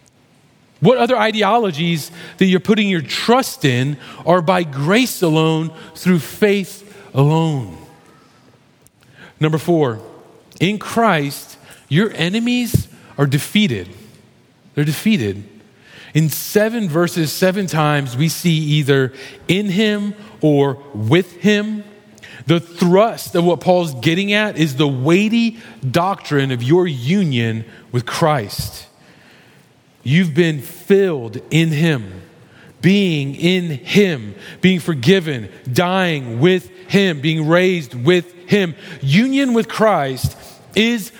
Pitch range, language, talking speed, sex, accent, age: 145-205 Hz, English, 110 wpm, male, American, 30-49